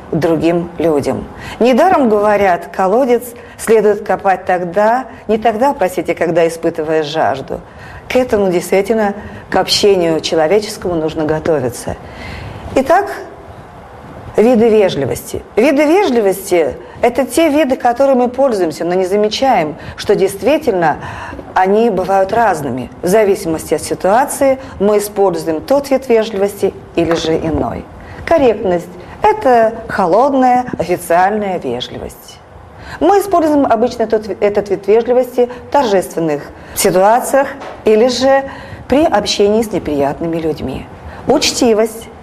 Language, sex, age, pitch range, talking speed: Russian, female, 40-59, 170-245 Hz, 110 wpm